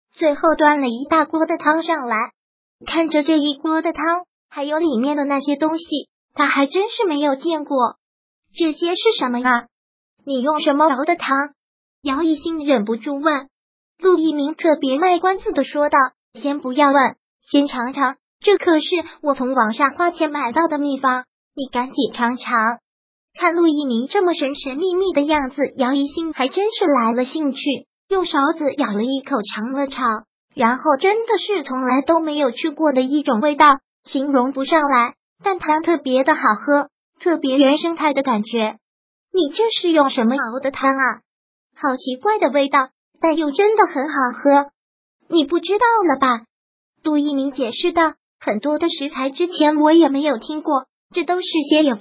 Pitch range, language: 265-325 Hz, Chinese